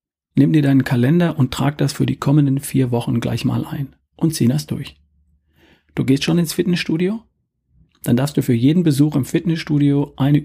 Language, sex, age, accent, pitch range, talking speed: German, male, 40-59, German, 125-150 Hz, 190 wpm